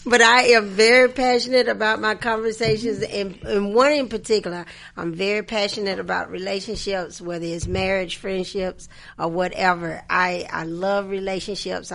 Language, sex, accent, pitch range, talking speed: English, female, American, 170-200 Hz, 140 wpm